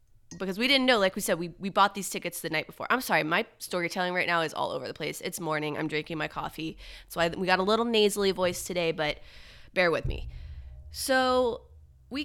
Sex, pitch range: female, 170-235 Hz